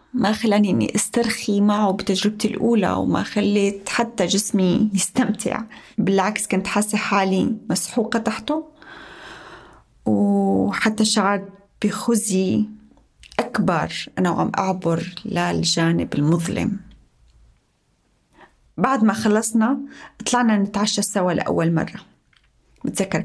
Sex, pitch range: female, 190-235 Hz